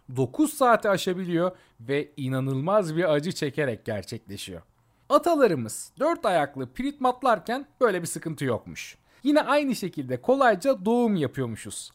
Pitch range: 130-215 Hz